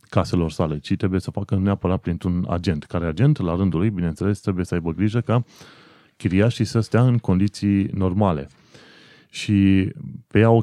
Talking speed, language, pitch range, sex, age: 170 wpm, Romanian, 90-110 Hz, male, 30-49